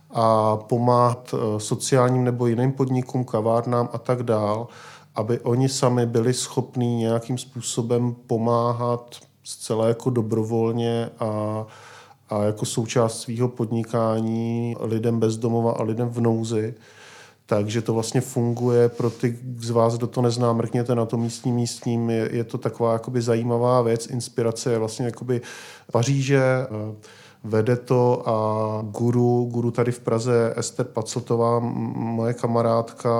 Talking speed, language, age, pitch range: 130 wpm, Czech, 40-59, 115-125 Hz